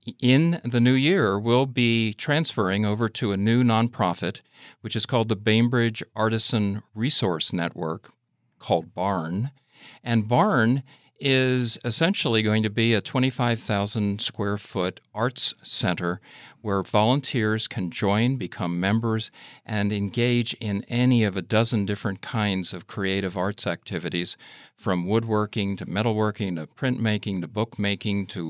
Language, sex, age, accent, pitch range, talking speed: English, male, 50-69, American, 95-120 Hz, 135 wpm